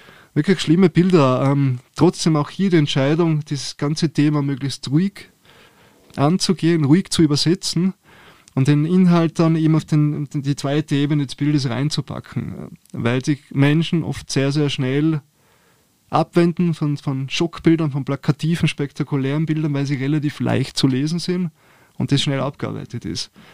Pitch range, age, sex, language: 130-155 Hz, 20-39, male, German